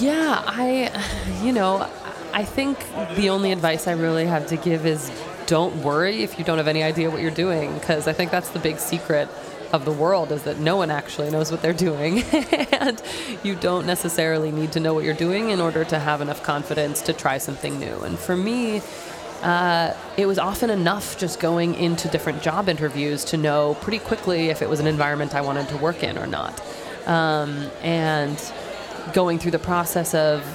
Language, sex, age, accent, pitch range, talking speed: Swedish, female, 20-39, American, 155-180 Hz, 200 wpm